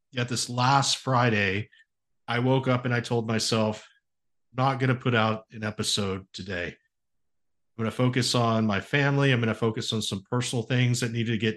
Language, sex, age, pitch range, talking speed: English, male, 50-69, 110-130 Hz, 195 wpm